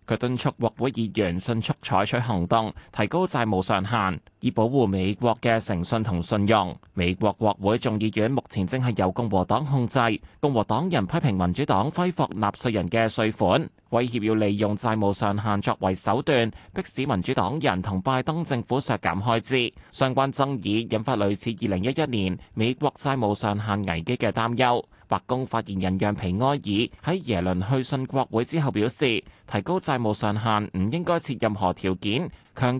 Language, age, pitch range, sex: Chinese, 20-39, 100-125 Hz, male